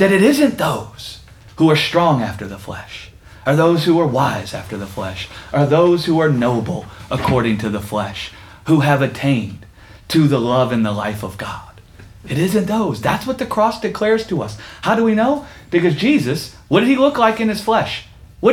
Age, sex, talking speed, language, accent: 30-49, male, 205 wpm, English, American